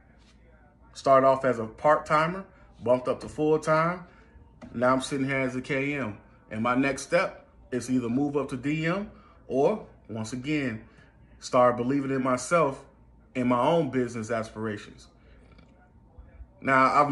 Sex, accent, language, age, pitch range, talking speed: male, American, English, 30-49, 110-140 Hz, 140 wpm